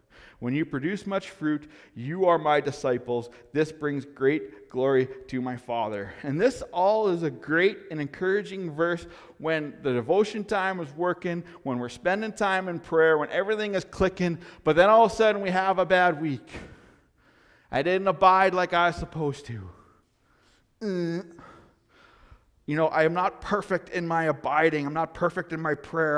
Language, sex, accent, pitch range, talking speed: English, male, American, 130-180 Hz, 175 wpm